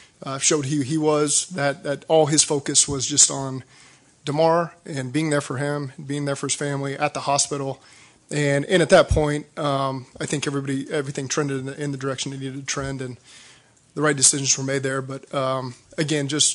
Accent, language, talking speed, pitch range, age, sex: American, English, 210 wpm, 135-150 Hz, 30-49, male